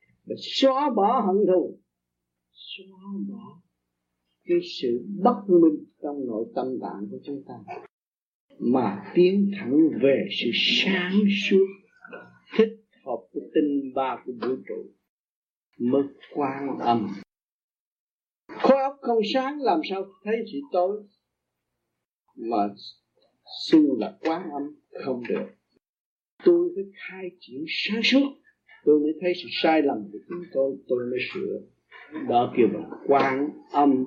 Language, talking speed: Vietnamese, 130 wpm